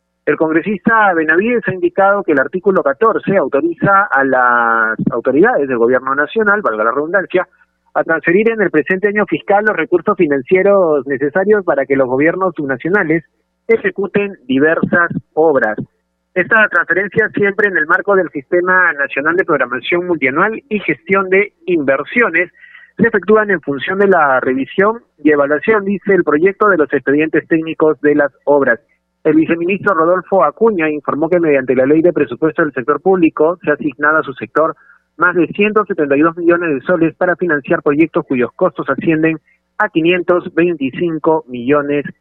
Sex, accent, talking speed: male, Argentinian, 155 wpm